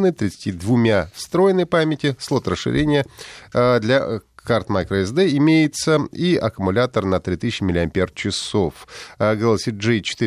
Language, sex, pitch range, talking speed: Russian, male, 100-140 Hz, 90 wpm